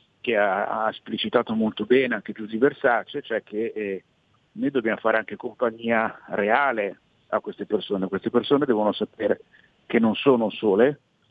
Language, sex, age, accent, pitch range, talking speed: Italian, male, 50-69, native, 105-125 Hz, 155 wpm